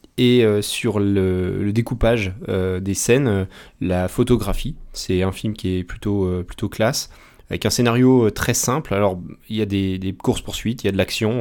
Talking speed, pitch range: 205 wpm, 95-115 Hz